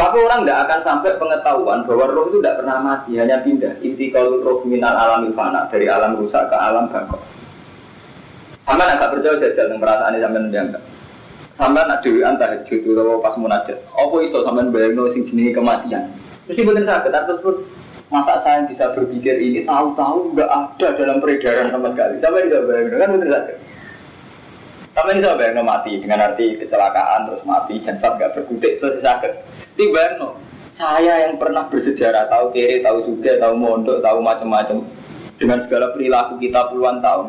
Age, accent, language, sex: 20-39, native, Indonesian, male